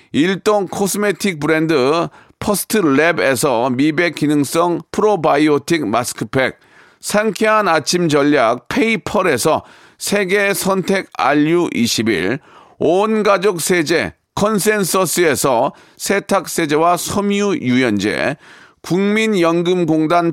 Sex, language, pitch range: male, Korean, 165-205 Hz